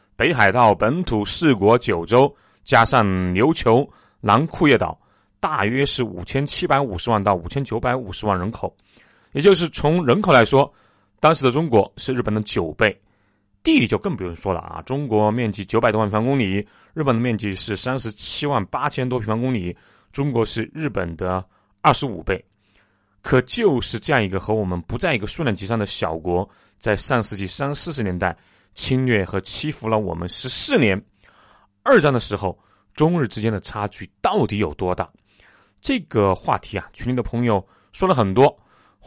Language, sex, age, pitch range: Chinese, male, 30-49, 95-125 Hz